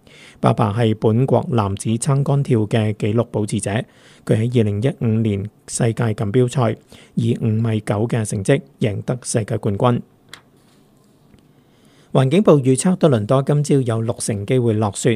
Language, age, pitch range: Chinese, 50-69, 110-130 Hz